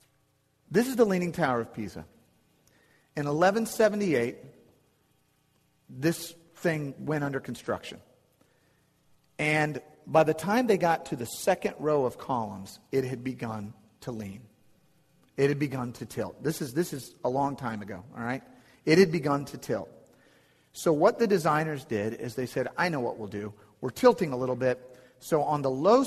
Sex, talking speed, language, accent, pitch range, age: male, 165 wpm, English, American, 120-160 Hz, 40-59